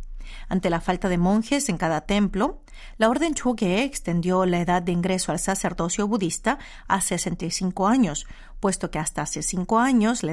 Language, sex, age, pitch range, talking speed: Spanish, female, 40-59, 175-230 Hz, 170 wpm